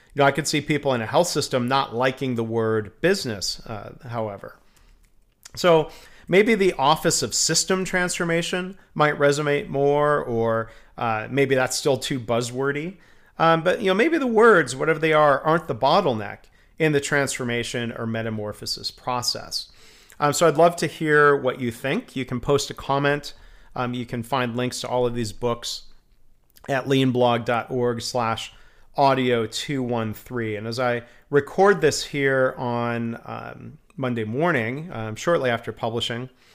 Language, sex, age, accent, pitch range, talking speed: English, male, 40-59, American, 120-150 Hz, 155 wpm